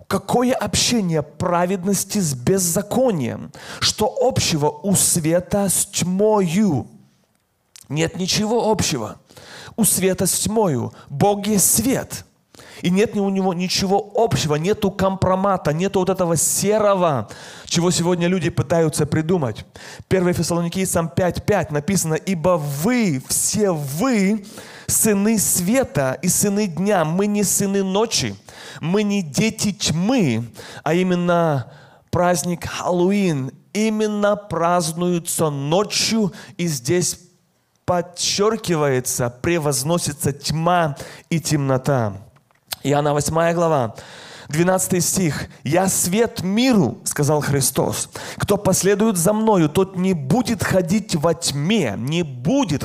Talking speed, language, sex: 110 wpm, Russian, male